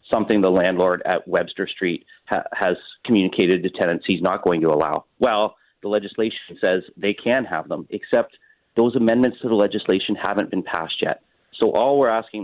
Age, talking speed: 30-49, 180 wpm